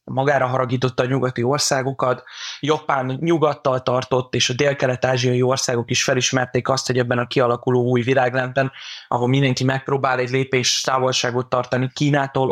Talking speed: 145 wpm